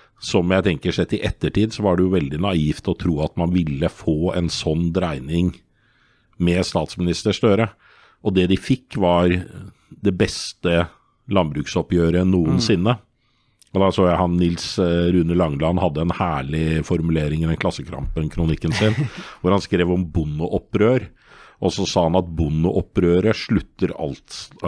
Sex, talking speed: male, 155 wpm